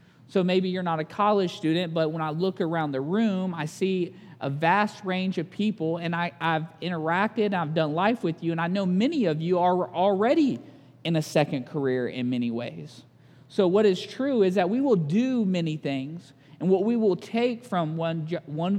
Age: 40-59